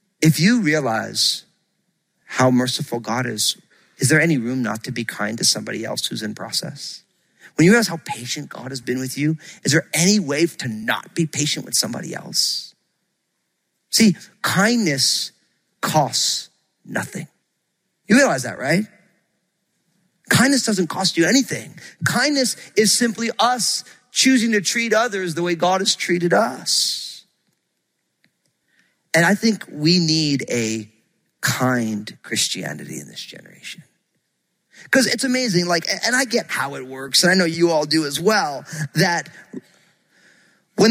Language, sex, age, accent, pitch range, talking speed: English, male, 40-59, American, 135-195 Hz, 145 wpm